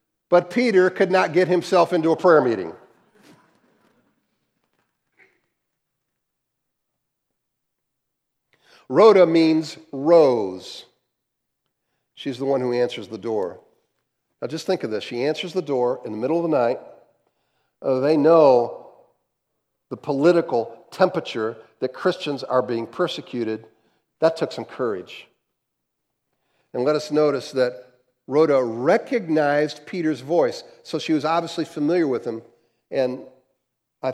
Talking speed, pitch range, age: 120 wpm, 125-175 Hz, 50-69